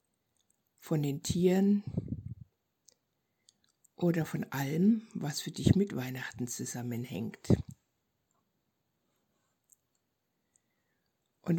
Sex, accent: female, German